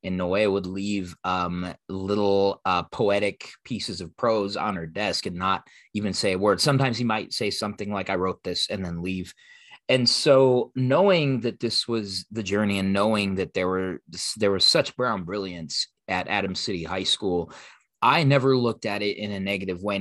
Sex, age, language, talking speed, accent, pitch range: male, 30-49, English, 190 wpm, American, 90-105 Hz